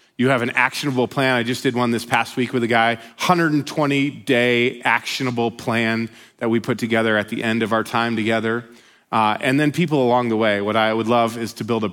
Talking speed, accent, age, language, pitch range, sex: 220 wpm, American, 30-49, English, 110-140 Hz, male